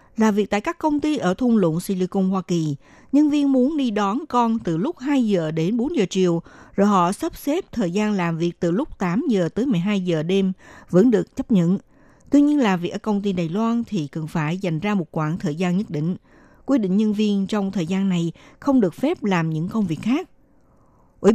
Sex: female